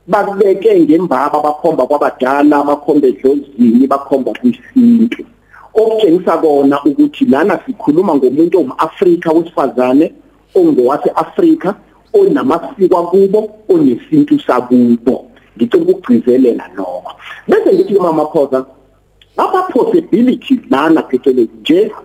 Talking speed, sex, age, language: 115 wpm, male, 50-69, English